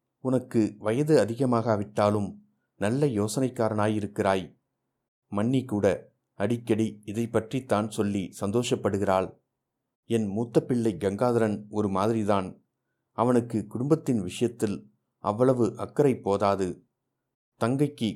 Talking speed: 85 wpm